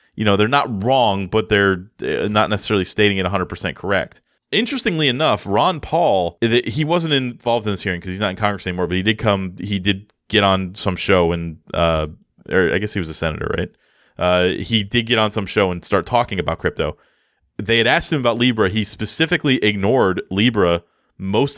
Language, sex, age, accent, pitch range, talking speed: English, male, 20-39, American, 95-120 Hz, 200 wpm